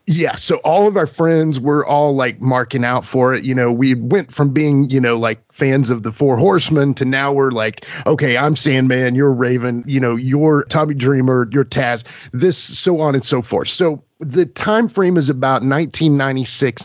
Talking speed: 200 wpm